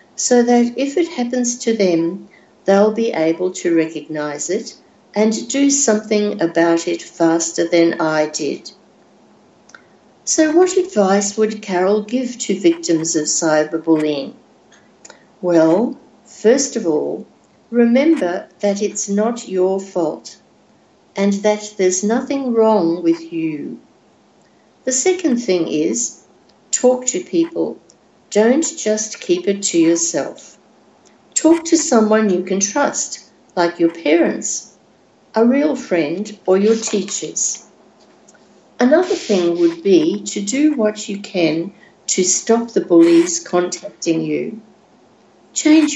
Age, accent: 60-79, Australian